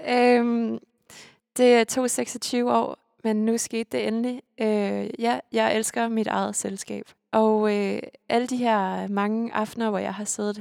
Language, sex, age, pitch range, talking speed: Danish, female, 20-39, 195-225 Hz, 165 wpm